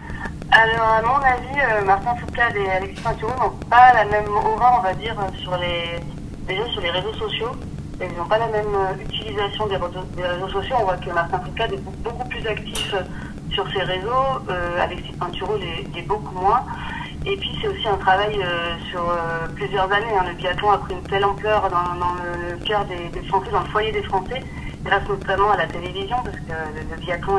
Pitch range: 170-200 Hz